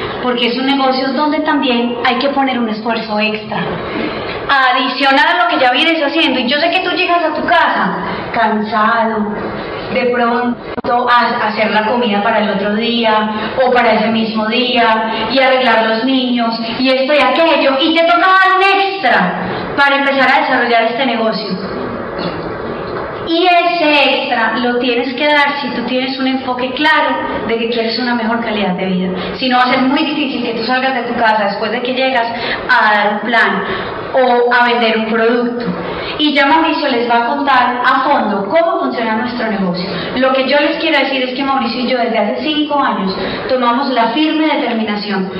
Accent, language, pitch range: Colombian, Spanish, 220-275 Hz